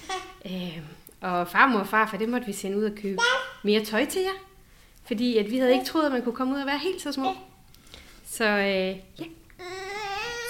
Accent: native